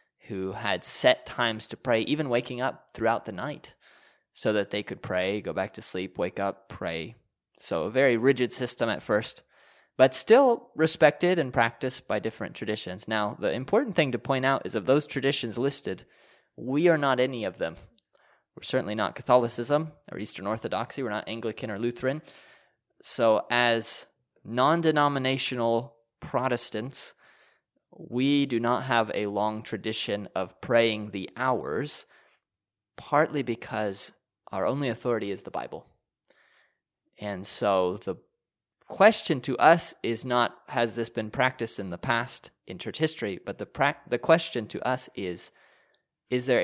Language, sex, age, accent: English, male, 20-39, American